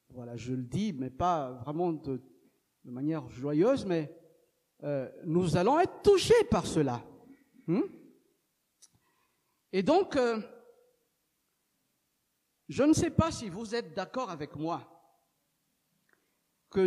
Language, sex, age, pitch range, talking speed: French, male, 50-69, 150-235 Hz, 120 wpm